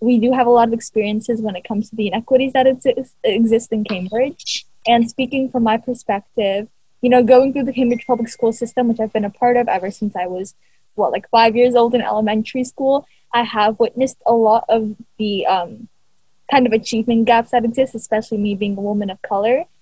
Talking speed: 210 wpm